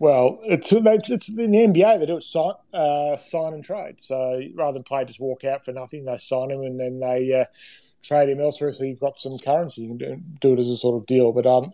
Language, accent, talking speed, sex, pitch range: English, Australian, 235 wpm, male, 125-145 Hz